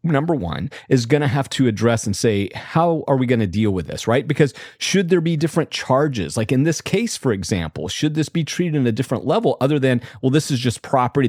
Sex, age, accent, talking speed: male, 40-59, American, 245 wpm